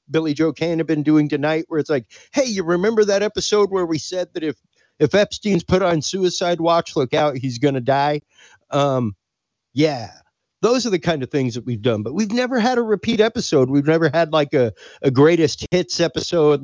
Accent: American